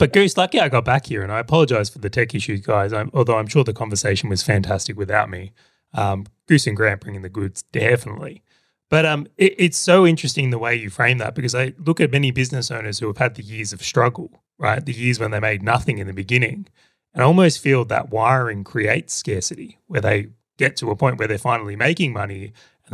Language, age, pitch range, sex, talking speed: English, 20-39, 105-140 Hz, male, 225 wpm